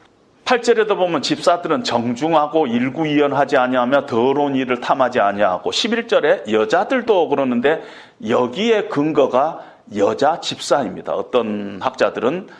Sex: male